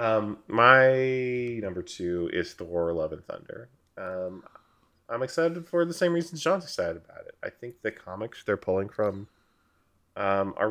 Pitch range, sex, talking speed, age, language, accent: 90-115 Hz, male, 165 wpm, 20-39, English, American